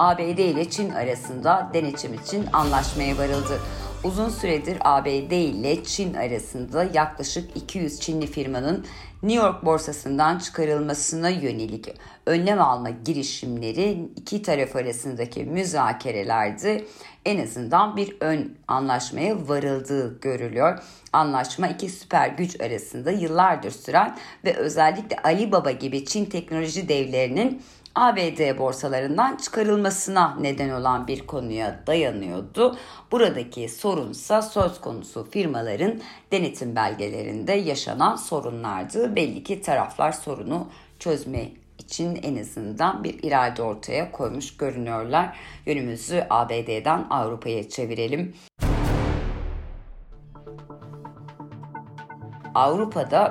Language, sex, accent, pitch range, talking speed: Turkish, female, native, 125-180 Hz, 100 wpm